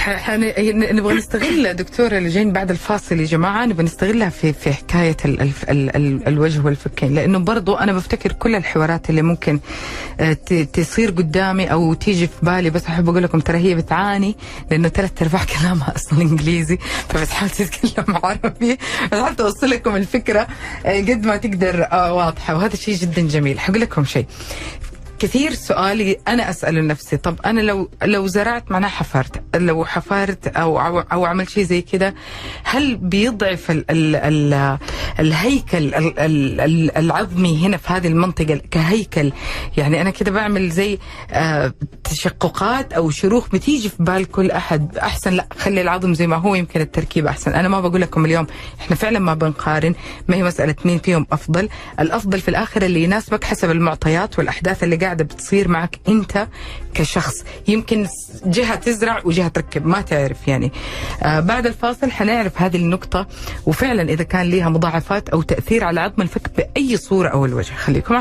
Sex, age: female, 30-49